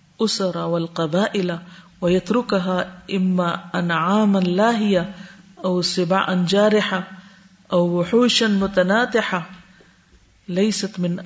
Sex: female